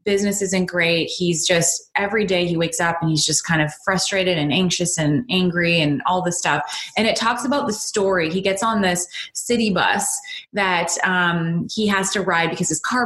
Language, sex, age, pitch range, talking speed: English, female, 20-39, 170-205 Hz, 205 wpm